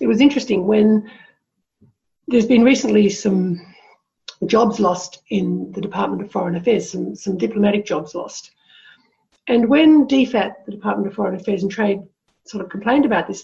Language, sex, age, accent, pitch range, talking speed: English, female, 50-69, Australian, 185-235 Hz, 160 wpm